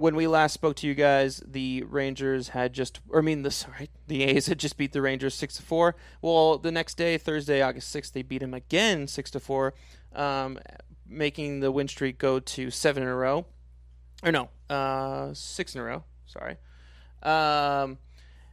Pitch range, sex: 125-145 Hz, male